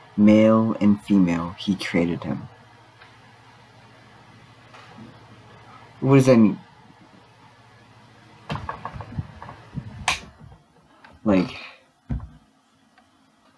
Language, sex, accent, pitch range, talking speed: English, male, American, 100-125 Hz, 50 wpm